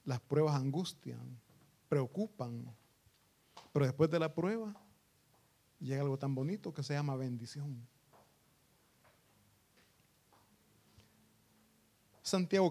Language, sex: Italian, male